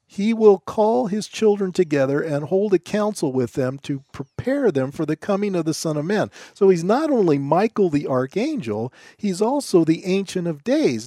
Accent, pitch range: American, 145-205 Hz